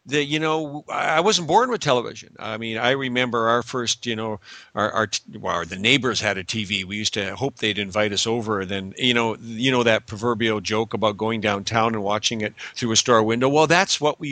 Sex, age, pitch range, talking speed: male, 50-69, 105-130 Hz, 220 wpm